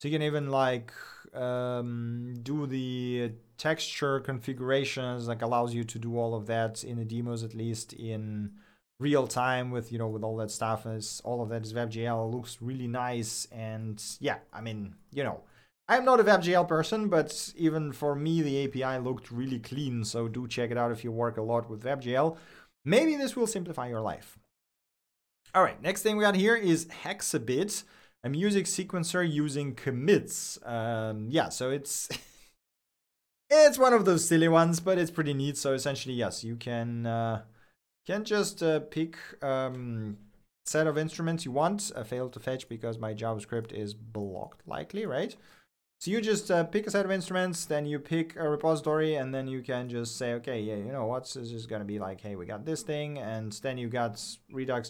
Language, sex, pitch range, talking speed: English, male, 115-155 Hz, 195 wpm